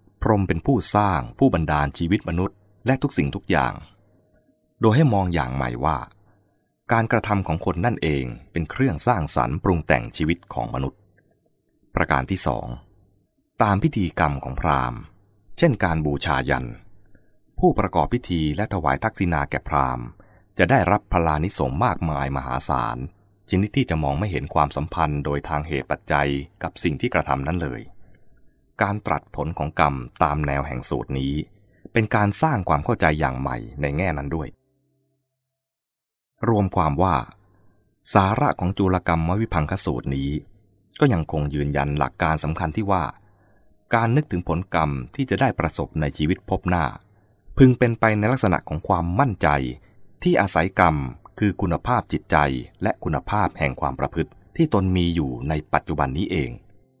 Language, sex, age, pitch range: English, male, 20-39, 75-105 Hz